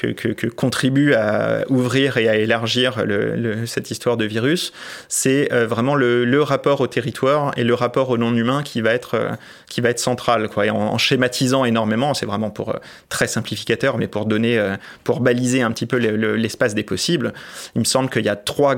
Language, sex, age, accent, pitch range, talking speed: French, male, 30-49, French, 110-130 Hz, 215 wpm